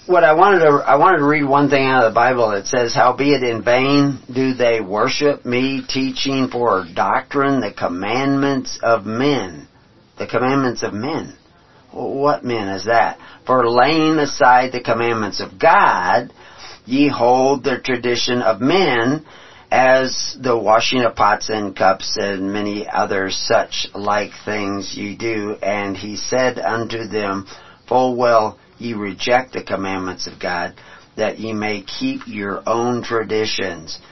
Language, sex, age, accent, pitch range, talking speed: English, male, 50-69, American, 100-130 Hz, 155 wpm